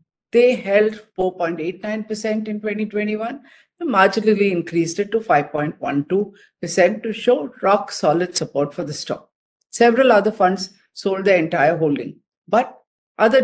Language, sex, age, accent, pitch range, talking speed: English, female, 50-69, Indian, 175-230 Hz, 125 wpm